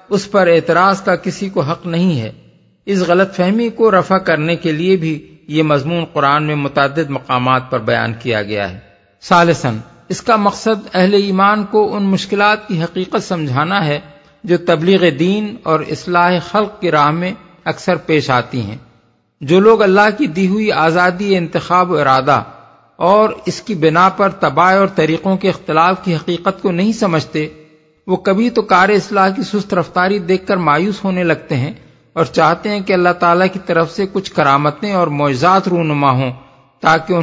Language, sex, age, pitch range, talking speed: Urdu, male, 50-69, 145-195 Hz, 175 wpm